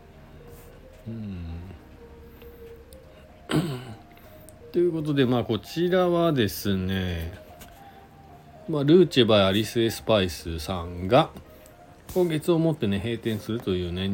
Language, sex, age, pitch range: Japanese, male, 40-59, 80-115 Hz